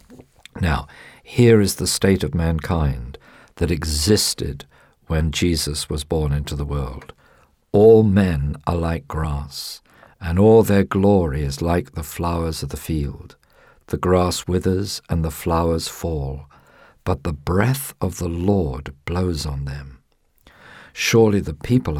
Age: 50-69